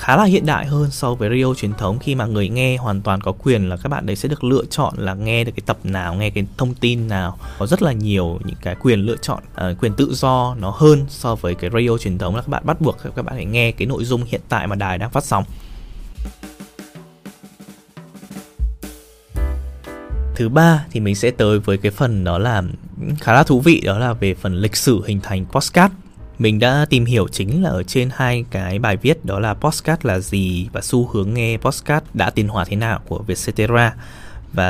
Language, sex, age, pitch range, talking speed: Vietnamese, male, 20-39, 95-130 Hz, 225 wpm